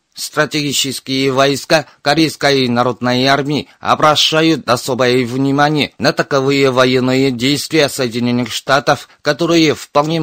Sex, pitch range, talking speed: male, 125-150 Hz, 95 wpm